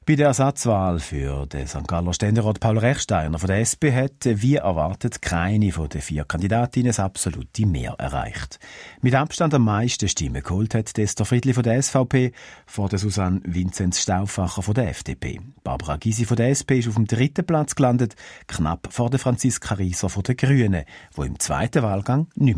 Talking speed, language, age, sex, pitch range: 175 wpm, German, 50-69, male, 95-135 Hz